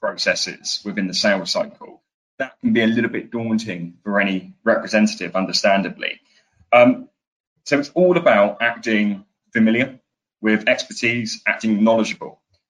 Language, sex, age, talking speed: English, male, 20-39, 130 wpm